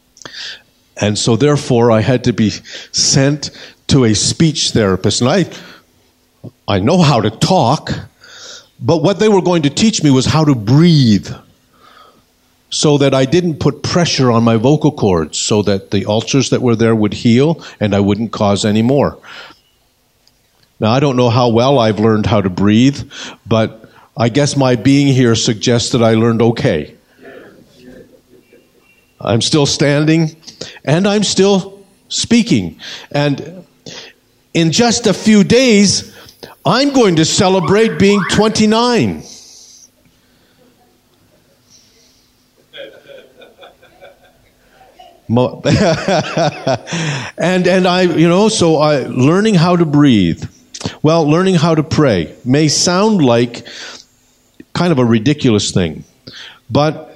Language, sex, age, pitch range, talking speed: English, male, 50-69, 120-175 Hz, 130 wpm